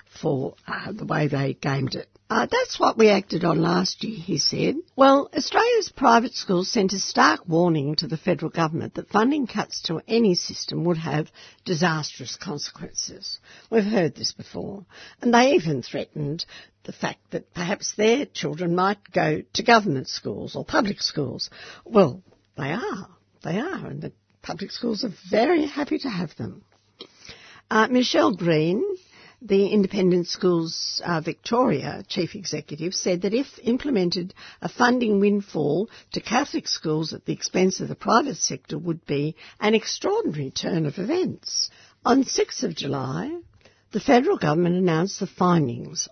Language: English